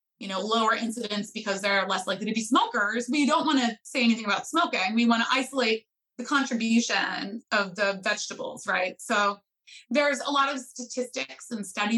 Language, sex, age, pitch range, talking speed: English, female, 20-39, 200-245 Hz, 185 wpm